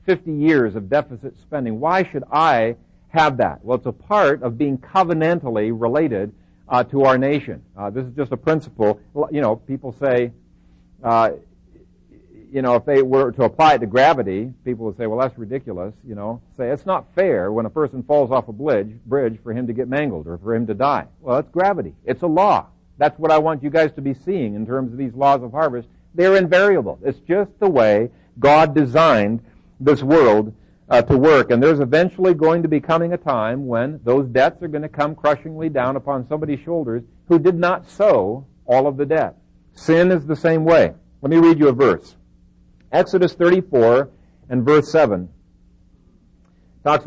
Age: 60-79